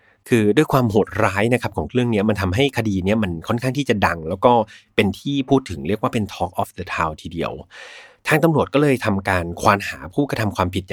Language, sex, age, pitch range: Thai, male, 30-49, 100-140 Hz